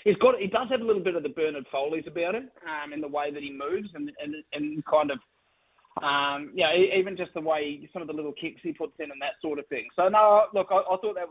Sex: male